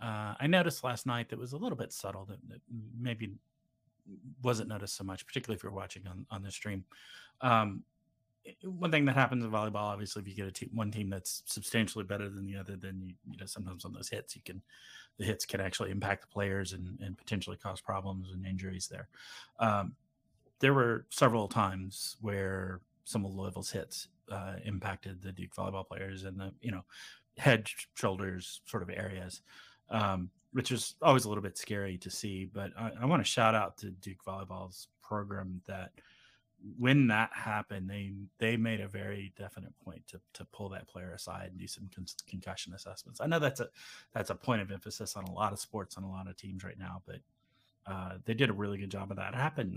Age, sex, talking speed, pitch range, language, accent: 30-49, male, 210 wpm, 95-115 Hz, English, American